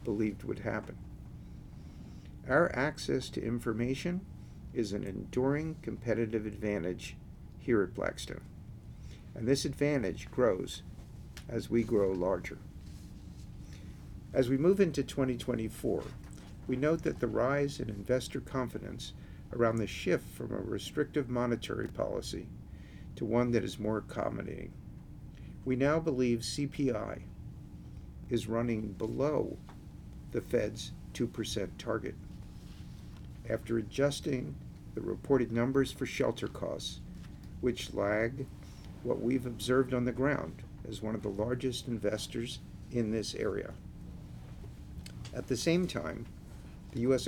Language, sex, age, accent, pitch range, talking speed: English, male, 50-69, American, 100-130 Hz, 115 wpm